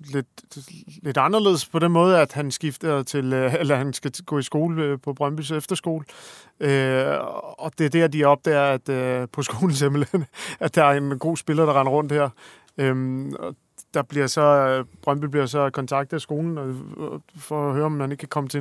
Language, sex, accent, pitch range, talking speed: Danish, male, native, 135-155 Hz, 185 wpm